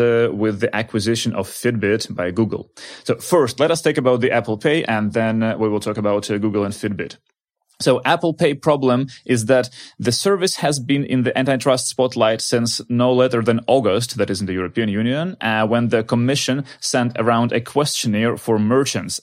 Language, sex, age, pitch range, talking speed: English, male, 30-49, 110-130 Hz, 195 wpm